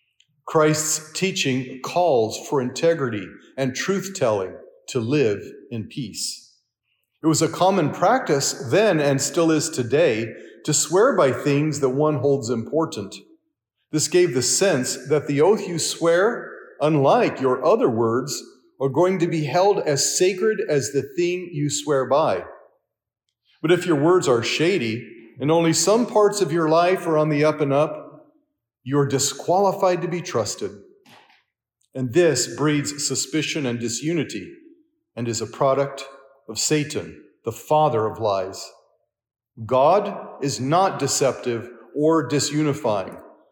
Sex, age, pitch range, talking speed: male, 40-59, 130-175 Hz, 140 wpm